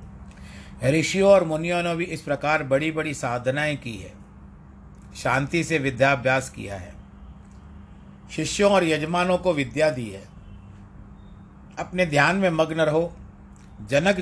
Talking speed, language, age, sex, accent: 125 wpm, Hindi, 50-69, male, native